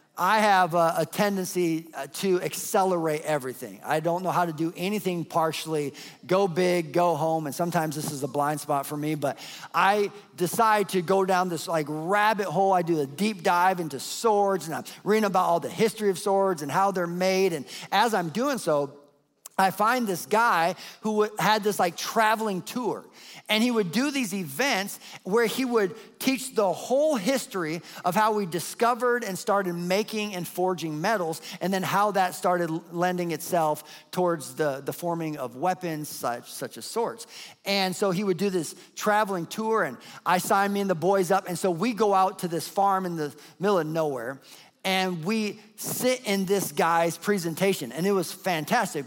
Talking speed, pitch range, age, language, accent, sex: 185 wpm, 165-205 Hz, 50-69, English, American, male